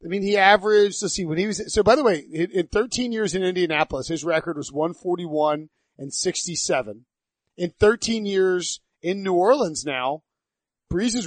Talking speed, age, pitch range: 170 wpm, 30-49, 150-190 Hz